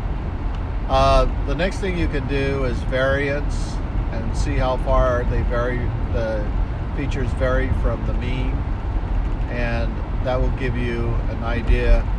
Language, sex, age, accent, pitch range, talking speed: English, male, 50-69, American, 95-125 Hz, 140 wpm